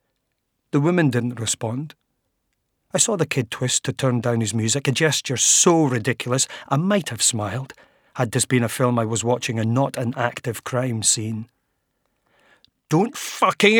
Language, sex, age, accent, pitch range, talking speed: English, male, 40-59, British, 120-140 Hz, 165 wpm